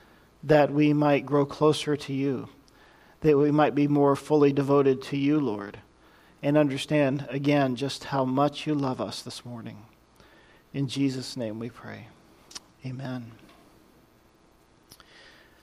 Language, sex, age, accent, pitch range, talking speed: English, male, 40-59, American, 140-165 Hz, 130 wpm